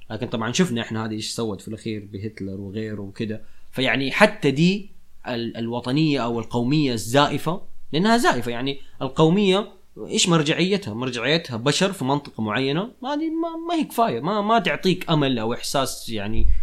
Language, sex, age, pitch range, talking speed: Arabic, male, 20-39, 110-150 Hz, 150 wpm